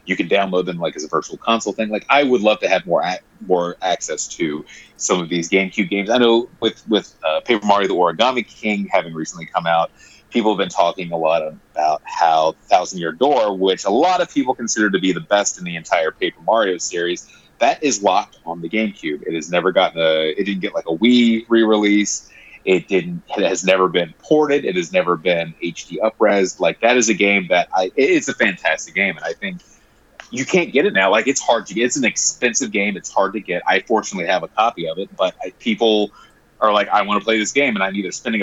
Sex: male